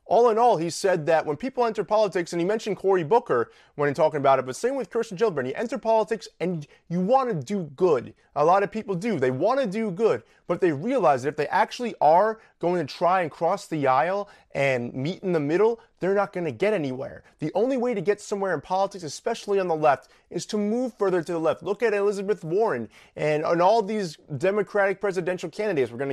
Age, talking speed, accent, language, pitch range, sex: 30-49, 230 wpm, American, English, 165-225 Hz, male